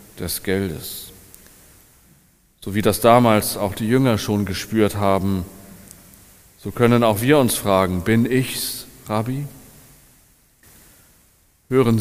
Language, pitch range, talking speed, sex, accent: German, 100-125 Hz, 110 wpm, male, German